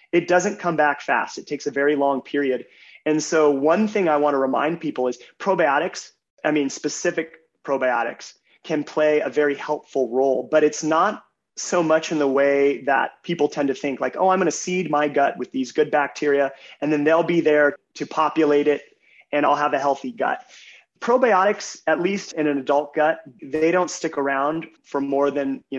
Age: 30-49